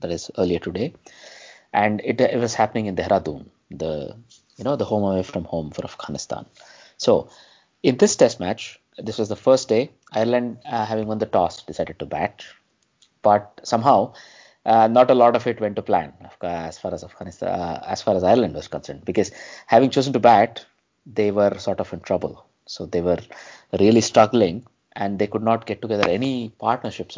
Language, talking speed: English, 190 wpm